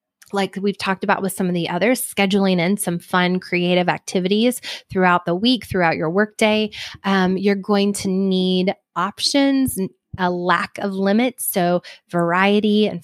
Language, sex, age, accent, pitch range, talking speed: English, female, 20-39, American, 175-205 Hz, 150 wpm